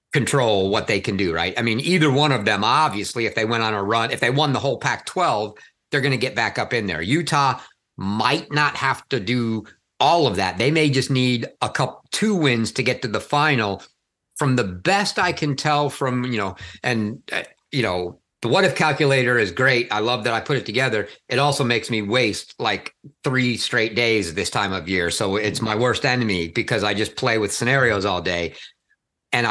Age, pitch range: 50-69, 110-145 Hz